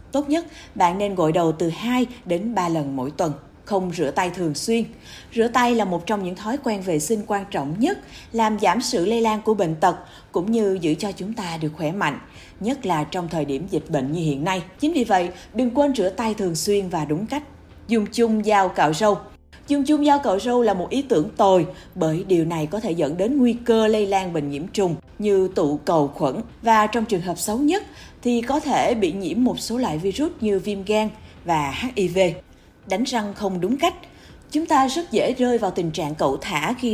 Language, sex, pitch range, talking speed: Vietnamese, female, 175-240 Hz, 225 wpm